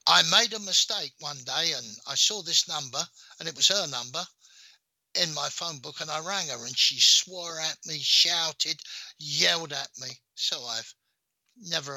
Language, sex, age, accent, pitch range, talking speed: English, male, 60-79, British, 135-175 Hz, 180 wpm